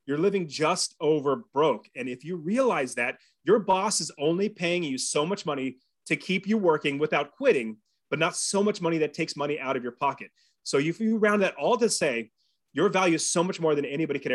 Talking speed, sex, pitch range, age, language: 225 wpm, male, 145-190 Hz, 30-49, English